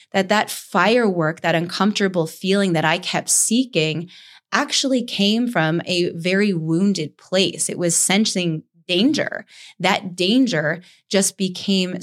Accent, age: American, 20-39